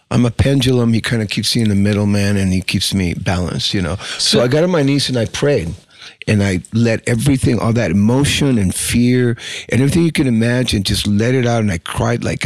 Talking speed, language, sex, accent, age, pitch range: 240 wpm, English, male, American, 50-69, 105-125 Hz